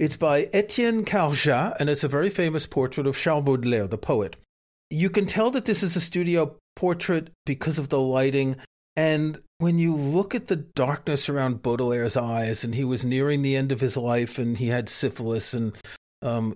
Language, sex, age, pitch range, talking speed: English, male, 40-59, 125-175 Hz, 190 wpm